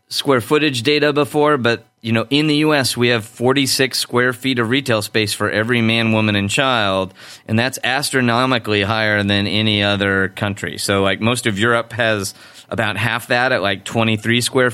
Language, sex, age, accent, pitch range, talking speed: English, male, 30-49, American, 110-130 Hz, 185 wpm